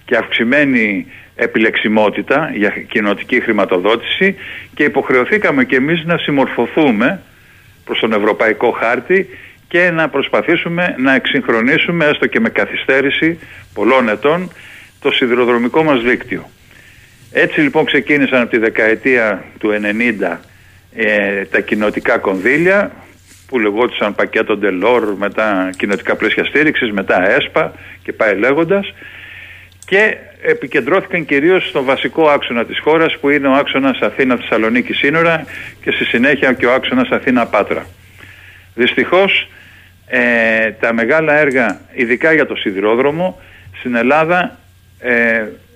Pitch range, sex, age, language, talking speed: 105-155 Hz, male, 50-69, Greek, 115 wpm